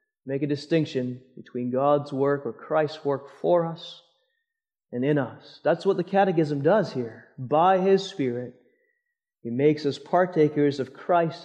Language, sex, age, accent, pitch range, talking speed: English, male, 30-49, American, 145-205 Hz, 150 wpm